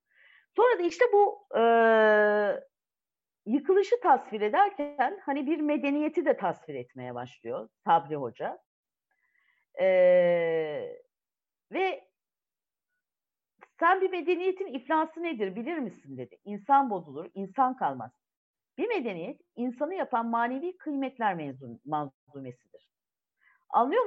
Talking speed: 100 wpm